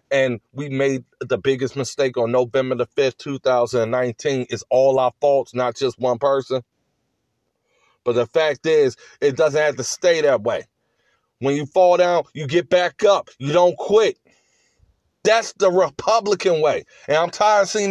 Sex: male